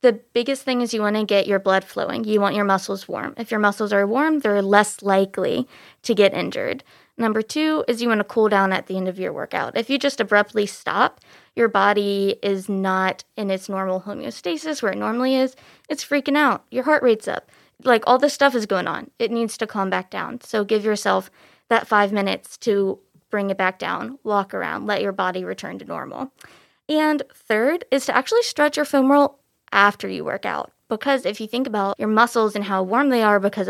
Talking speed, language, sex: 215 wpm, English, female